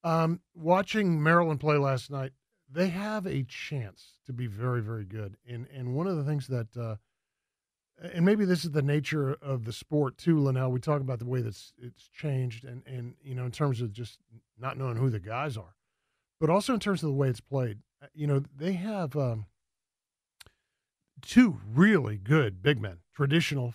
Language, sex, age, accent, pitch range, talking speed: English, male, 40-59, American, 125-160 Hz, 195 wpm